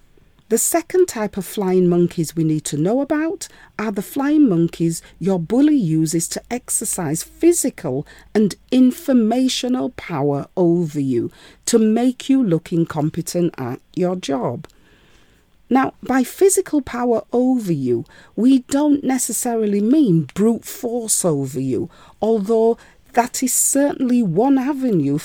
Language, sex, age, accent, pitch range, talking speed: English, female, 40-59, British, 175-265 Hz, 130 wpm